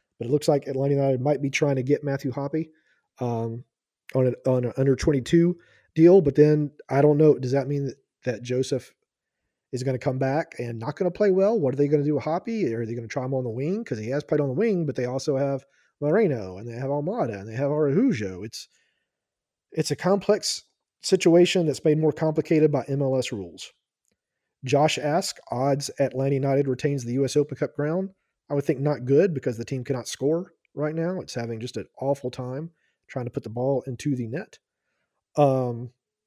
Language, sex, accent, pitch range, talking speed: English, male, American, 130-155 Hz, 210 wpm